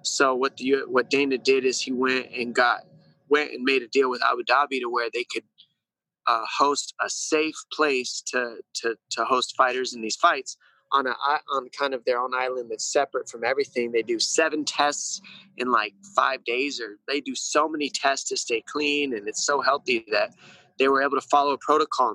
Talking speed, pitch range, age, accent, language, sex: 210 wpm, 130-190 Hz, 20-39, American, English, male